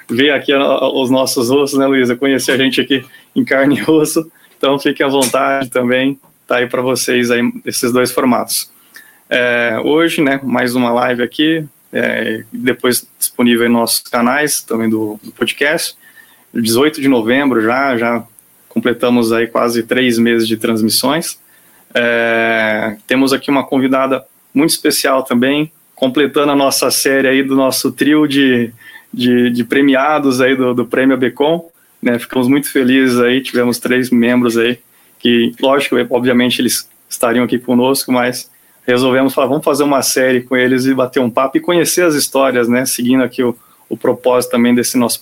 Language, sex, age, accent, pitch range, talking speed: Portuguese, male, 20-39, Brazilian, 120-135 Hz, 165 wpm